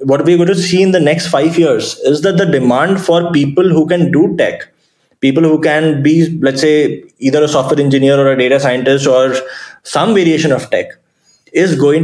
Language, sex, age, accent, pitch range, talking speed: English, male, 20-39, Indian, 130-165 Hz, 205 wpm